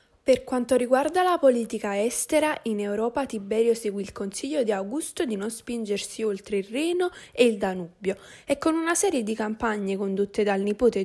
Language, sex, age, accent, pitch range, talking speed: Italian, female, 10-29, native, 205-280 Hz, 175 wpm